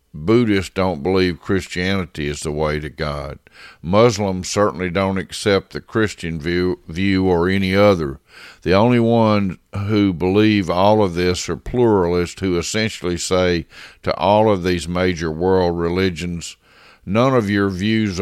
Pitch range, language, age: 85-100 Hz, English, 50-69